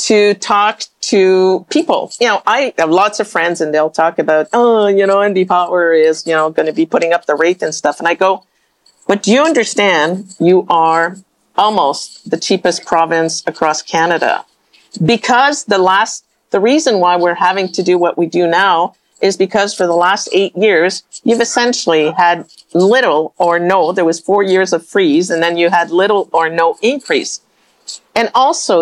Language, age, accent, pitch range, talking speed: English, 50-69, American, 170-235 Hz, 185 wpm